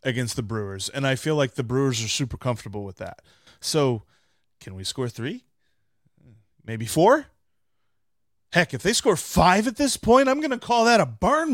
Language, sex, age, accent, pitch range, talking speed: English, male, 30-49, American, 115-185 Hz, 185 wpm